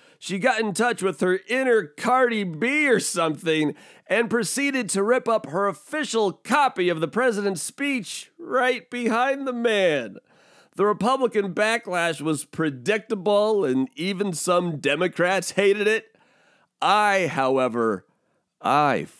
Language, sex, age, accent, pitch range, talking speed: English, male, 40-59, American, 150-215 Hz, 130 wpm